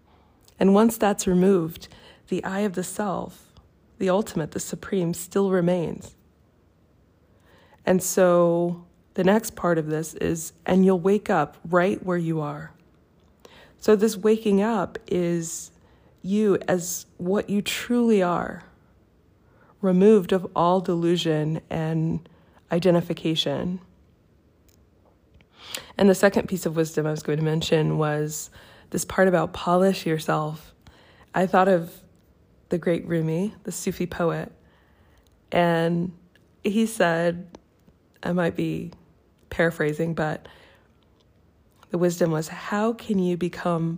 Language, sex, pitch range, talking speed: English, female, 155-185 Hz, 120 wpm